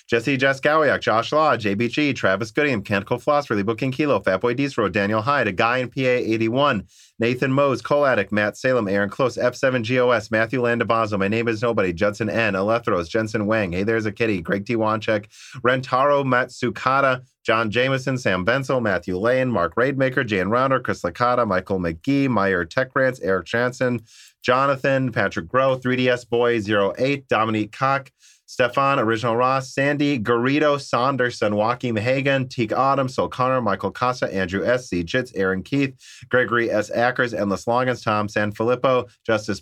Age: 30-49